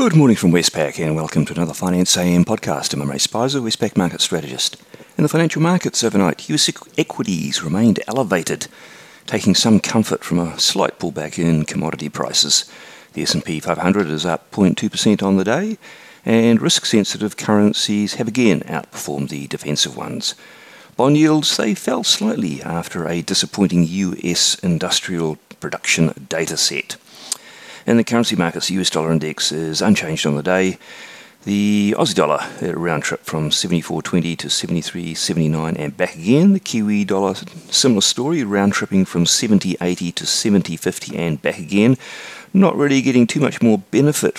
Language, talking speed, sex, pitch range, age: English, 155 wpm, male, 75-105 Hz, 50-69